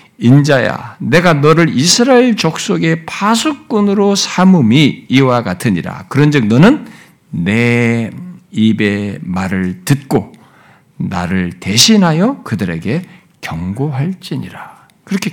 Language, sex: Korean, male